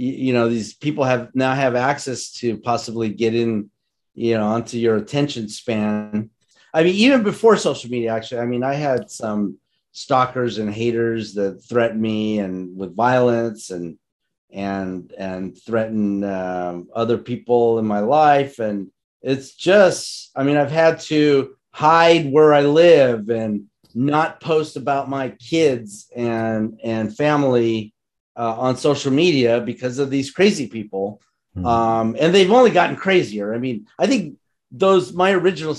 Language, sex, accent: English, male, American